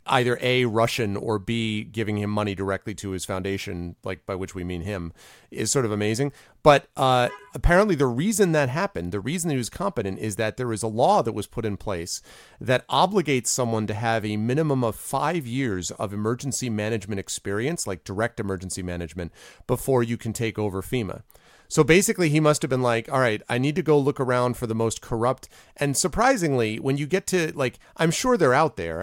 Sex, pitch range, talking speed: male, 105-150 Hz, 205 wpm